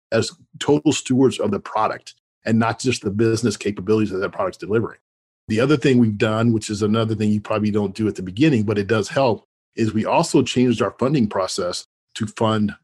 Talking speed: 210 wpm